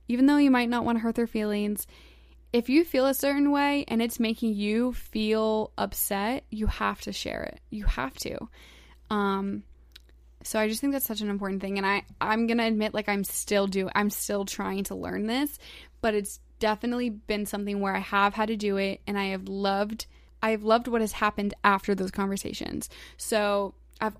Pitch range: 200-240 Hz